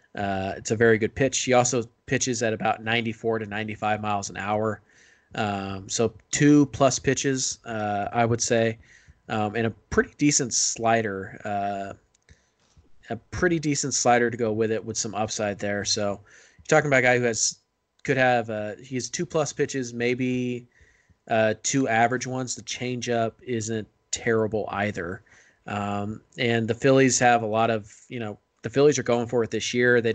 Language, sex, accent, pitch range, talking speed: English, male, American, 110-125 Hz, 180 wpm